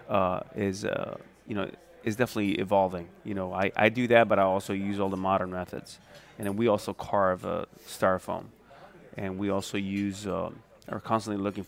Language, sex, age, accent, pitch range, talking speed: English, male, 30-49, American, 100-115 Hz, 195 wpm